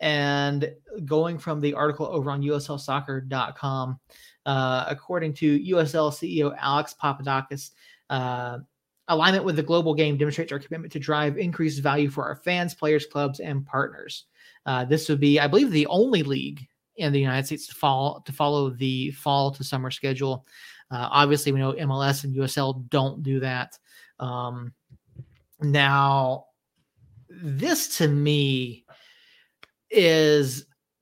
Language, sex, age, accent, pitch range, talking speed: English, male, 30-49, American, 135-155 Hz, 135 wpm